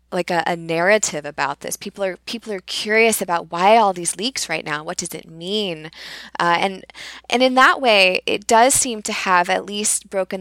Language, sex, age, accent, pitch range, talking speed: English, female, 10-29, American, 165-205 Hz, 210 wpm